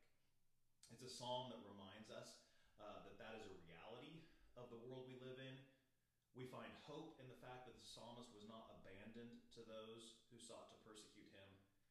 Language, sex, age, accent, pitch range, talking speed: English, male, 30-49, American, 100-130 Hz, 175 wpm